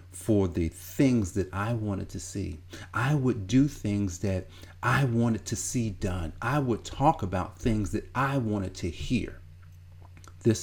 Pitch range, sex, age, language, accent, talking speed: 90-120 Hz, male, 40-59, English, American, 165 wpm